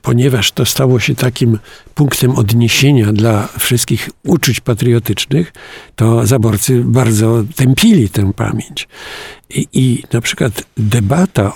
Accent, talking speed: native, 115 wpm